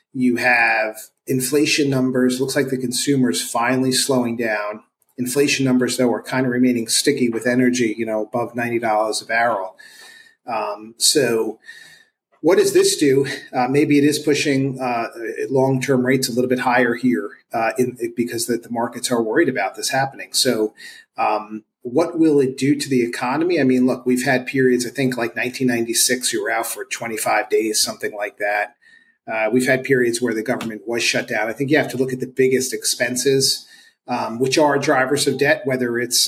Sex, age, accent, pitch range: male, 40-59, American, 120-145 Hz